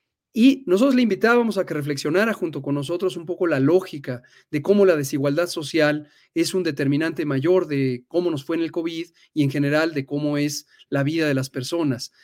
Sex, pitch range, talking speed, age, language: male, 145-190 Hz, 200 wpm, 40-59, Spanish